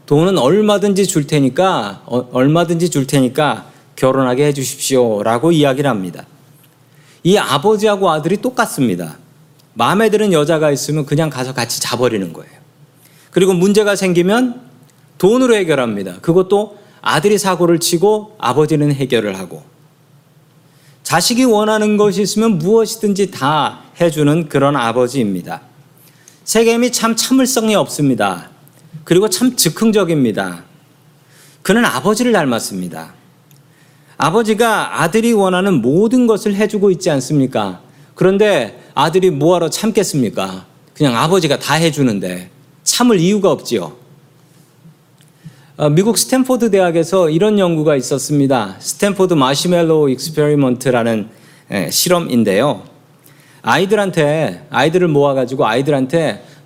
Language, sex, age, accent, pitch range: Korean, male, 40-59, native, 140-195 Hz